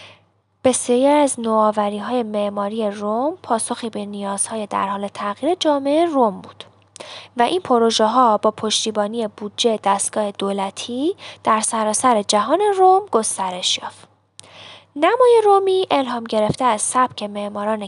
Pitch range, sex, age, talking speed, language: 210-255 Hz, female, 10-29, 120 wpm, Persian